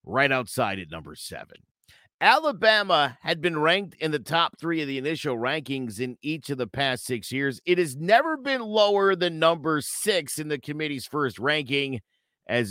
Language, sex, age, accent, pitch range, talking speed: English, male, 50-69, American, 125-175 Hz, 180 wpm